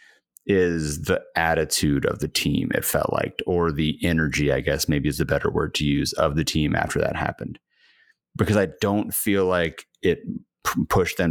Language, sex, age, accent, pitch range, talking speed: English, male, 30-49, American, 80-100 Hz, 190 wpm